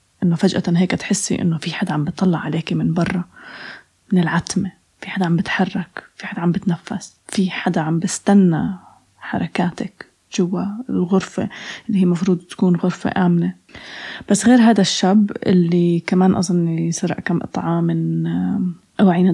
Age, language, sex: 20-39, Arabic, female